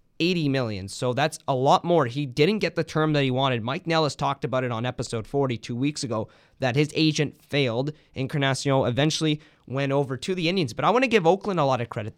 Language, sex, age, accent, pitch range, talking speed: English, male, 20-39, American, 130-155 Hz, 225 wpm